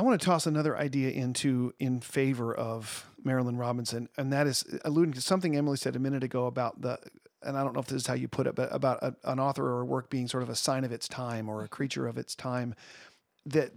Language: English